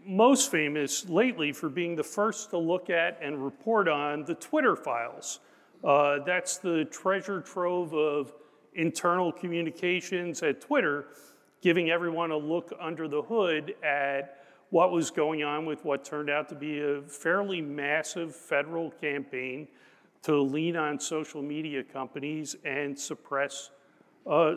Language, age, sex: English, 40-59, male